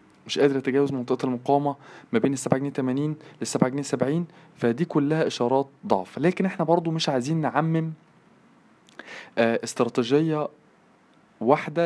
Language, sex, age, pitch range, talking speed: Arabic, male, 20-39, 120-155 Hz, 125 wpm